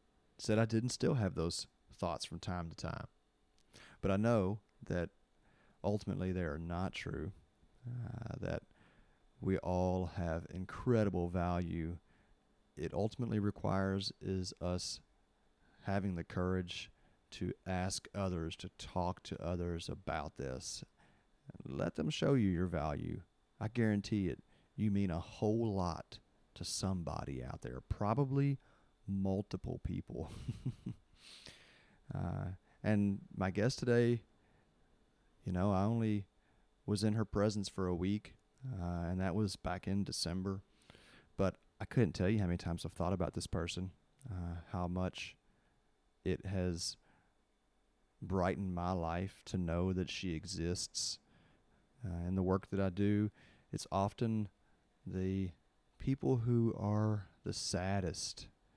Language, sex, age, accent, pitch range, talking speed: English, male, 30-49, American, 85-105 Hz, 130 wpm